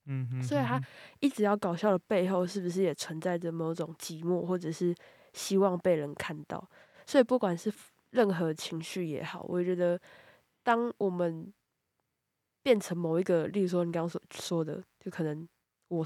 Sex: female